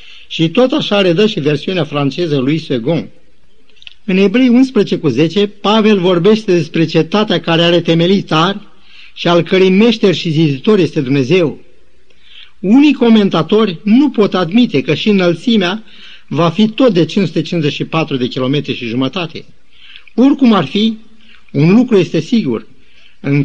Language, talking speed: Romanian, 140 wpm